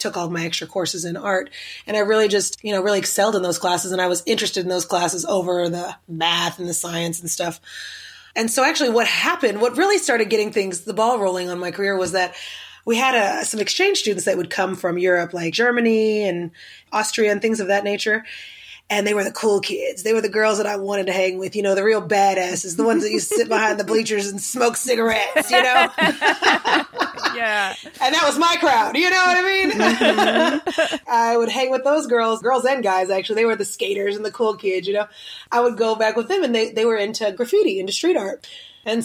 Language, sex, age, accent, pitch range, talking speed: English, female, 20-39, American, 185-230 Hz, 230 wpm